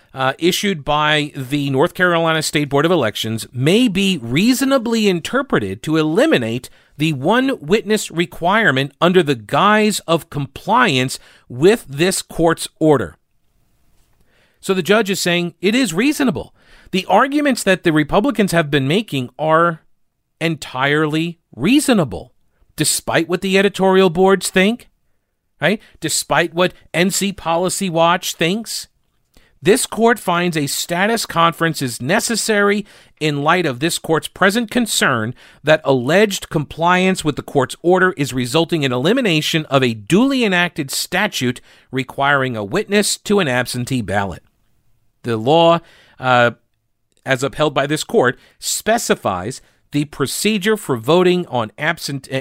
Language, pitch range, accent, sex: English, 135-195 Hz, American, male